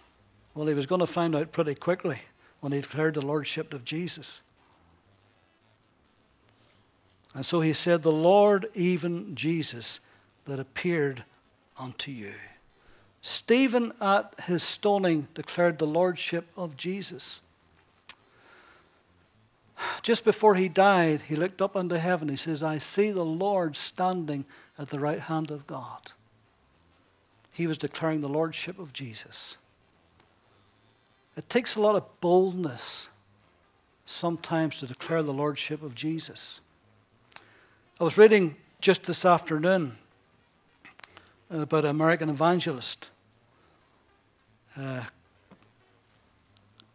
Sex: male